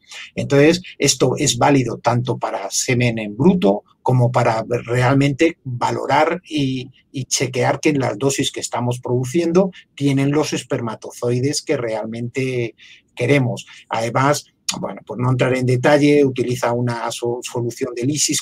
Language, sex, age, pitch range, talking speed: Spanish, male, 50-69, 120-145 Hz, 130 wpm